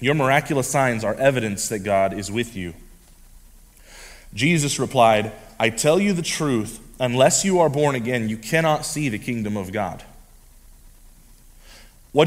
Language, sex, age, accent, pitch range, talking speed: English, male, 30-49, American, 90-130 Hz, 145 wpm